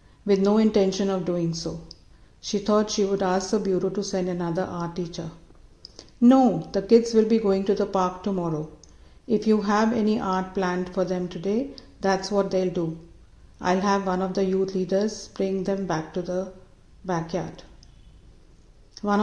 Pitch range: 175-205 Hz